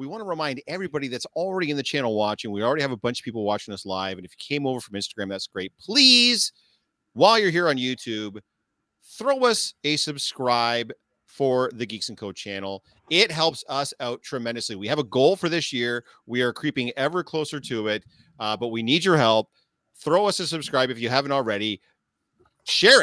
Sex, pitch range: male, 105-145 Hz